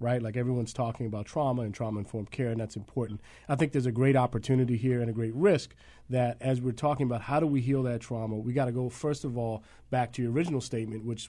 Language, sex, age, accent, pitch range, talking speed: English, male, 40-59, American, 115-135 Hz, 250 wpm